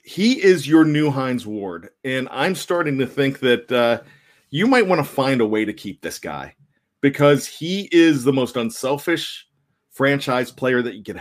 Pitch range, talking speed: 120-140 Hz, 185 wpm